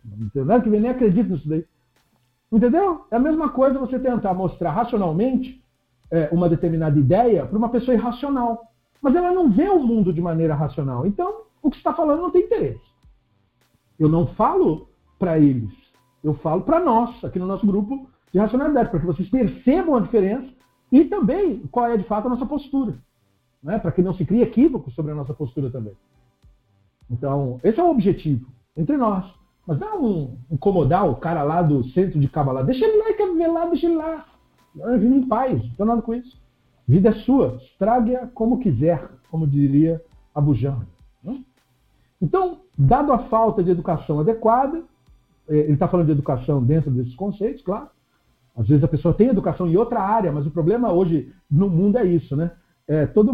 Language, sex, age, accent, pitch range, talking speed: Portuguese, male, 50-69, Brazilian, 150-240 Hz, 180 wpm